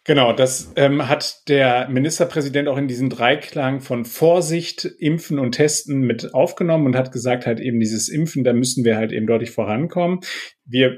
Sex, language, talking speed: male, German, 175 wpm